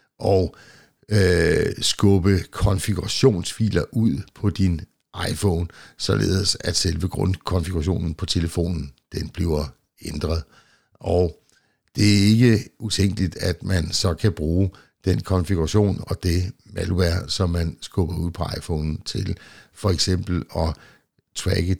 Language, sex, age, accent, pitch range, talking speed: Danish, male, 60-79, native, 85-100 Hz, 120 wpm